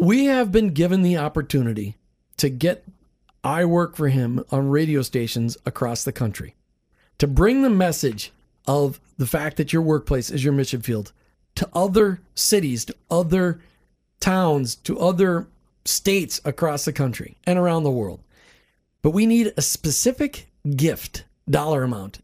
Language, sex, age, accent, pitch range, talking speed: English, male, 40-59, American, 135-180 Hz, 150 wpm